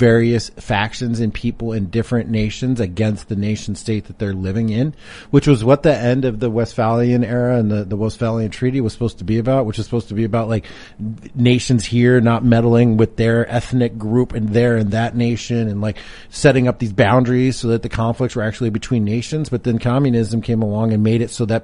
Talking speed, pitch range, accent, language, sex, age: 215 wpm, 110-135 Hz, American, English, male, 30-49